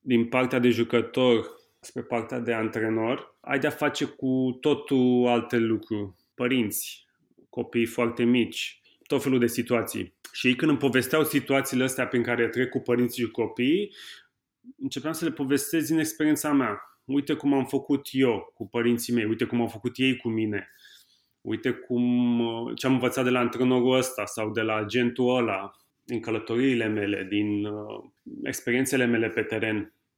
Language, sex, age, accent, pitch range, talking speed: Romanian, male, 30-49, native, 115-140 Hz, 160 wpm